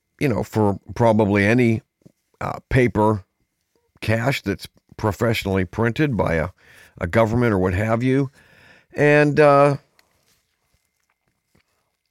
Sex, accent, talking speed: male, American, 105 wpm